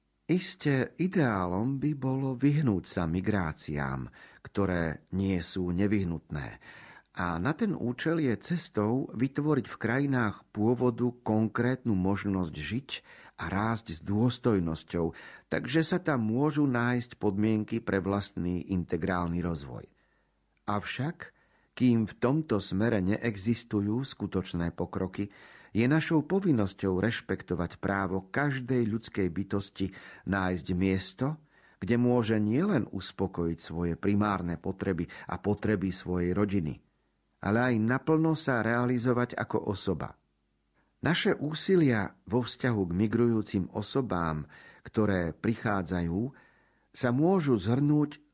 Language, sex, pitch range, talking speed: Slovak, male, 90-125 Hz, 105 wpm